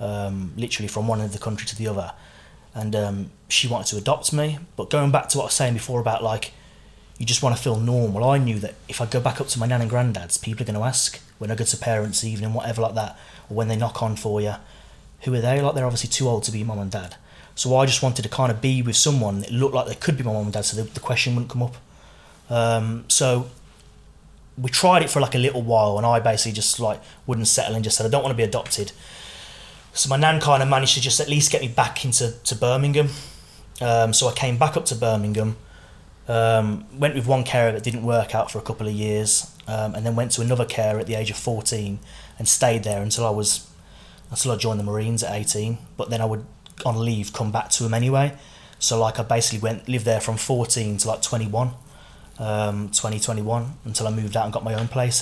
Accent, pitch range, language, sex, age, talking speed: British, 110-125 Hz, English, male, 30-49, 250 wpm